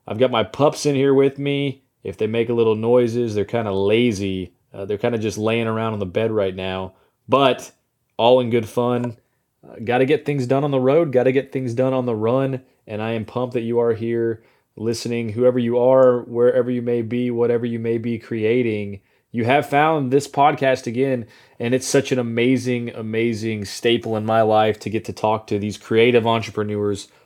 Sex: male